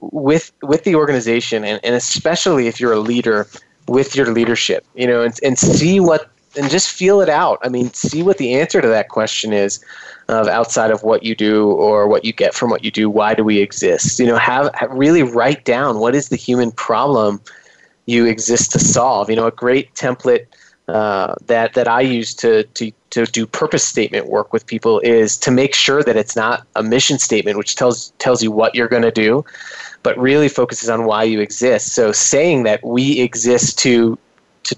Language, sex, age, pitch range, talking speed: English, male, 20-39, 115-145 Hz, 210 wpm